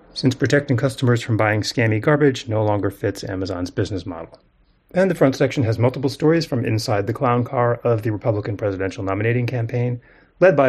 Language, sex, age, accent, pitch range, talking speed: English, male, 30-49, American, 100-130 Hz, 185 wpm